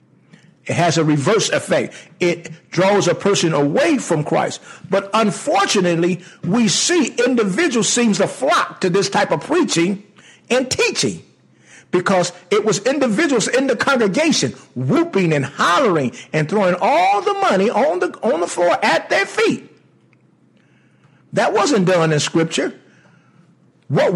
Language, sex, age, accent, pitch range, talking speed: English, male, 50-69, American, 160-210 Hz, 140 wpm